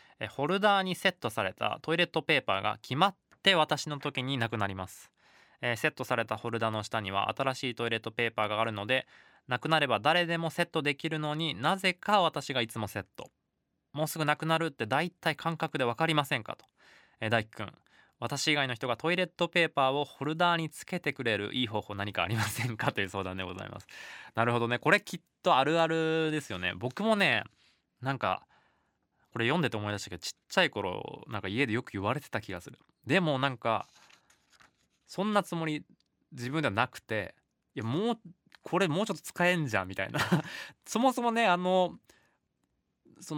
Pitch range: 115-165 Hz